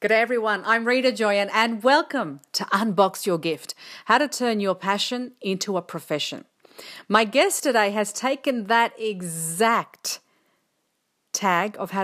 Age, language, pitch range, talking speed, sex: 40-59, English, 185-235 Hz, 145 wpm, female